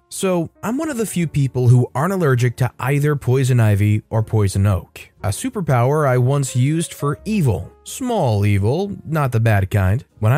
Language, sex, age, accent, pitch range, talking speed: English, male, 20-39, American, 115-150 Hz, 180 wpm